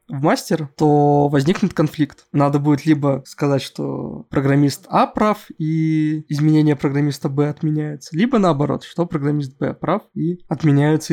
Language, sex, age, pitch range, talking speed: Russian, male, 20-39, 145-180 Hz, 140 wpm